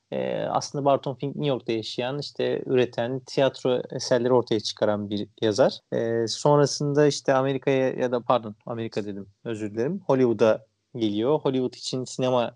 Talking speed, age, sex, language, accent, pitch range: 150 wpm, 30-49, male, Turkish, native, 115-145 Hz